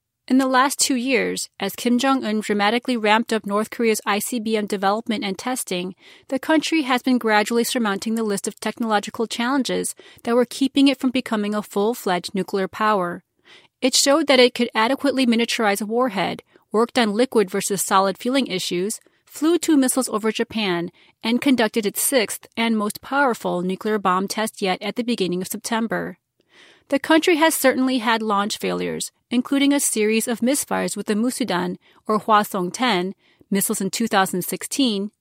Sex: female